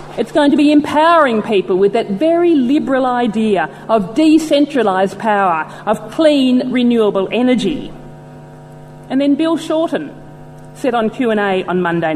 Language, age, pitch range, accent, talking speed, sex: English, 40-59, 190-285 Hz, Australian, 135 wpm, female